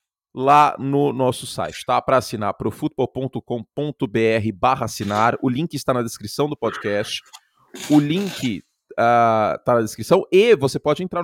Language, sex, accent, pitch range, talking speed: Portuguese, male, Brazilian, 120-180 Hz, 140 wpm